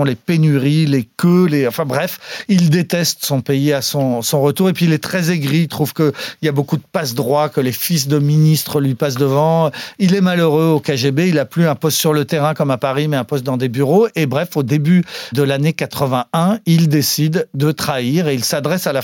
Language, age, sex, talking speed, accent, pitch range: French, 40-59, male, 235 wpm, French, 140-180 Hz